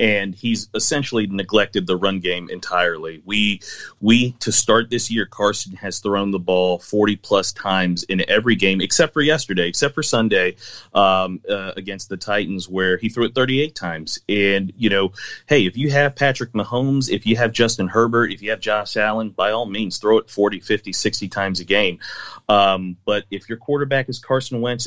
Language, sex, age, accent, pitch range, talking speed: English, male, 30-49, American, 95-110 Hz, 190 wpm